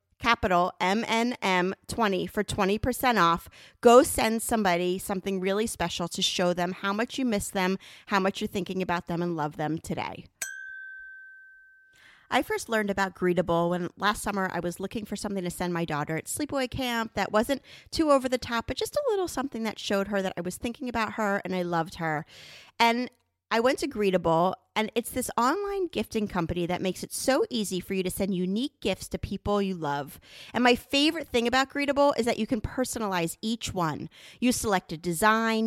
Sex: female